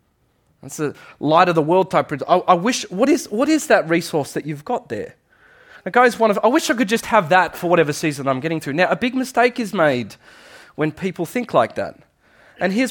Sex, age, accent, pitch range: male, 30-49, Australian, 155-220 Hz